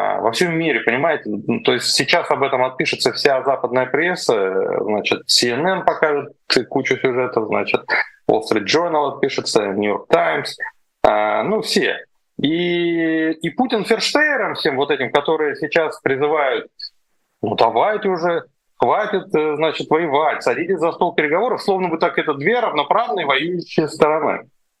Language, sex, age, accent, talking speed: Russian, male, 20-39, native, 135 wpm